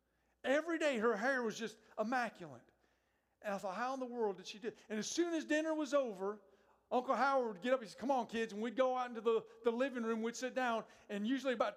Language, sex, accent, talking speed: English, male, American, 250 wpm